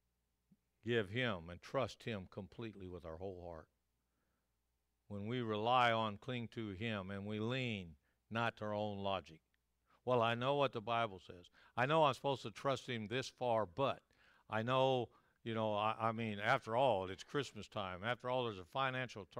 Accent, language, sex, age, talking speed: American, English, male, 60-79, 185 wpm